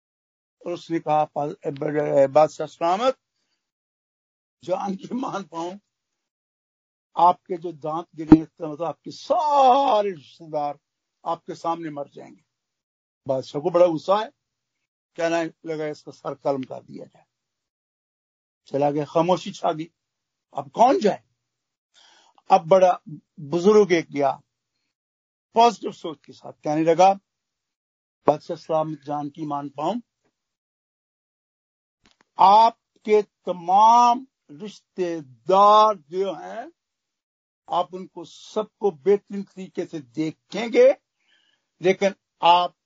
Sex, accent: male, native